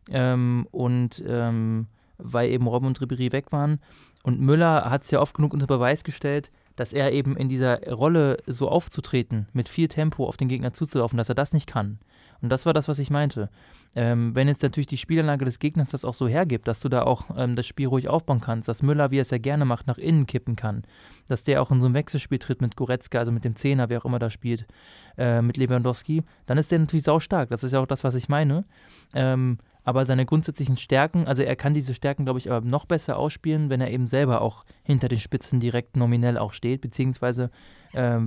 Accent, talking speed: German, 230 wpm